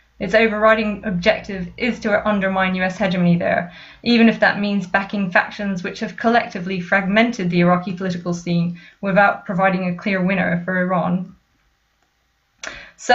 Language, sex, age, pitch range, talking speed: English, female, 20-39, 195-220 Hz, 140 wpm